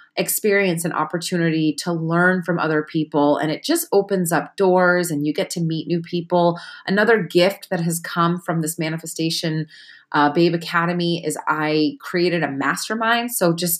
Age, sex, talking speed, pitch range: 30-49, female, 170 wpm, 165-205 Hz